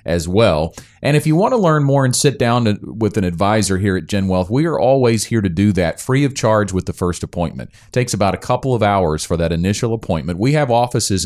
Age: 40-59